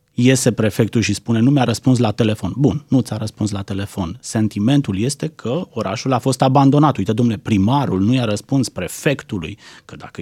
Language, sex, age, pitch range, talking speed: Romanian, male, 30-49, 110-165 Hz, 180 wpm